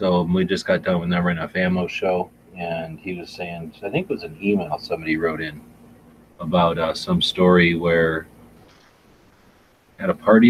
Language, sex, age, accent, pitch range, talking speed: English, male, 30-49, American, 85-95 Hz, 175 wpm